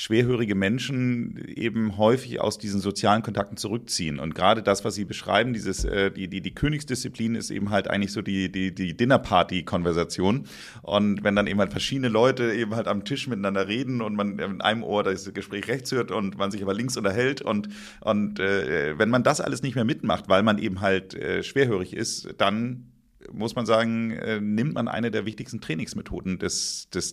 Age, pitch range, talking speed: 40-59, 95-115 Hz, 190 wpm